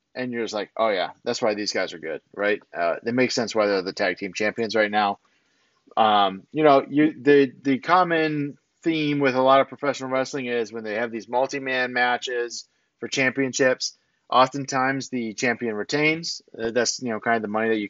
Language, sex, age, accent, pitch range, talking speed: English, male, 30-49, American, 115-140 Hz, 205 wpm